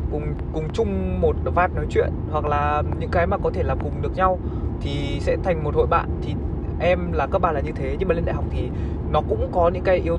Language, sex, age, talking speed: Vietnamese, male, 20-39, 260 wpm